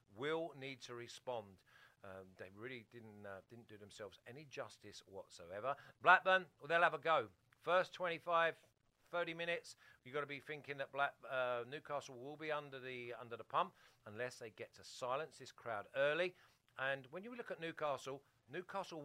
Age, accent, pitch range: 50-69, British, 120-155 Hz